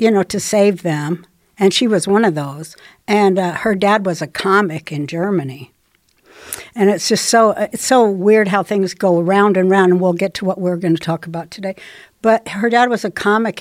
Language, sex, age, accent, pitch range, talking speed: English, female, 60-79, American, 175-220 Hz, 220 wpm